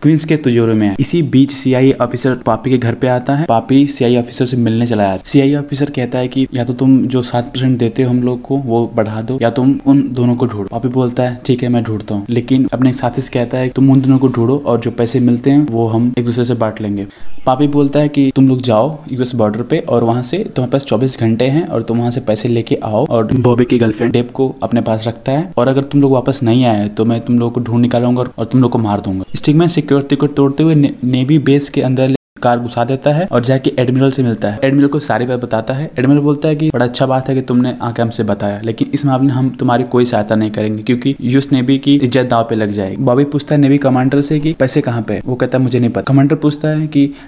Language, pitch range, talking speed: Hindi, 120-140 Hz, 255 wpm